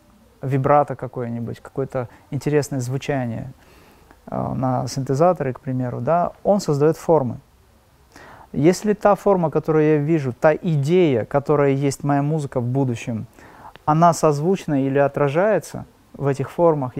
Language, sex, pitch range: Russian, male, 135-165 Hz